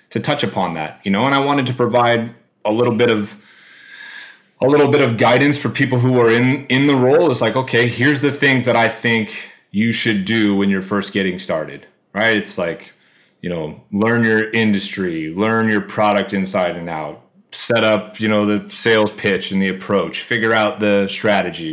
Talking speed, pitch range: 200 wpm, 105-120 Hz